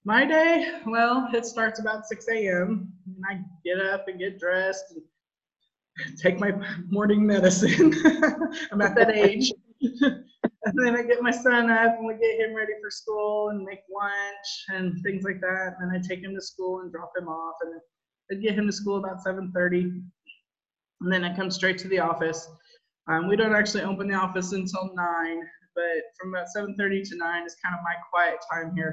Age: 20-39